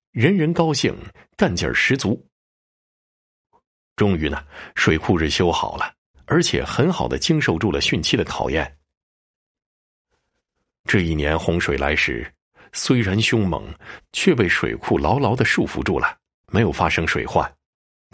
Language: Chinese